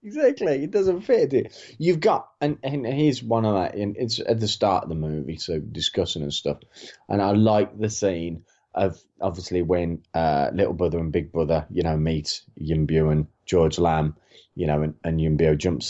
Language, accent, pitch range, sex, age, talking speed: English, British, 85-125 Hz, male, 20-39, 205 wpm